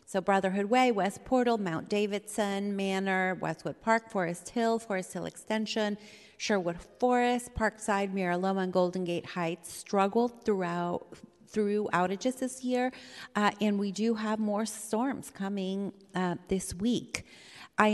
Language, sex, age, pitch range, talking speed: English, female, 30-49, 185-225 Hz, 140 wpm